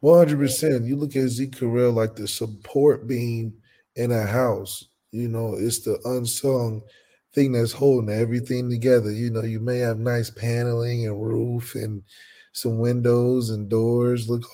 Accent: American